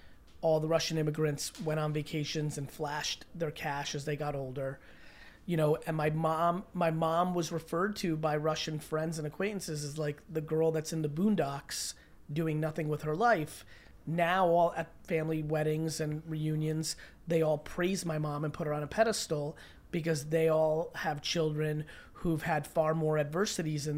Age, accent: 30-49, American